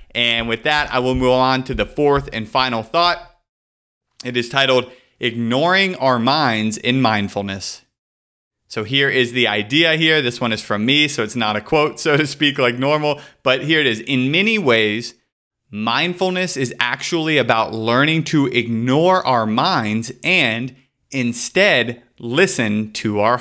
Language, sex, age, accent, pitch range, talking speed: English, male, 30-49, American, 115-150 Hz, 160 wpm